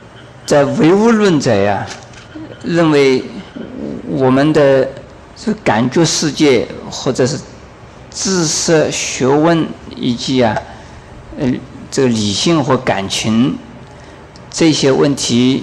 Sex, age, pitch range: male, 50-69, 115-155 Hz